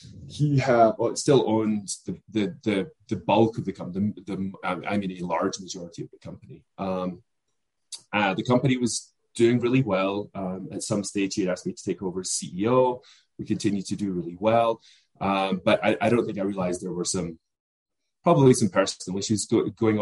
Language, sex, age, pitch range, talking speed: English, male, 20-39, 95-115 Hz, 200 wpm